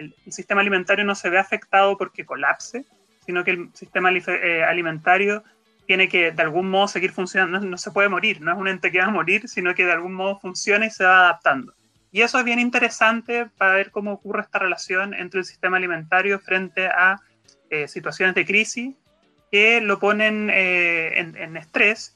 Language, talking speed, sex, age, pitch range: Romanian, 195 wpm, male, 30-49, 165-200 Hz